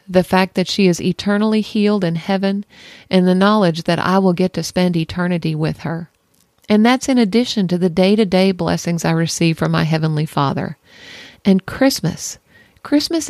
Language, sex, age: English, female, 50-69